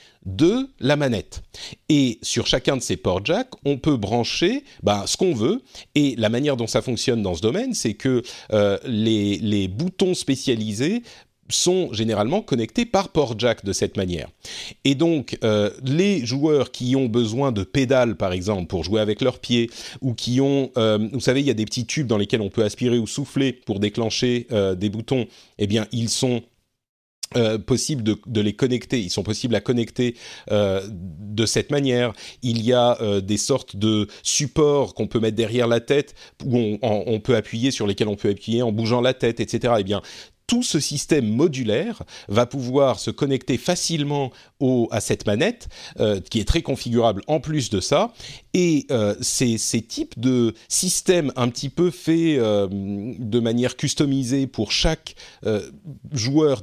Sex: male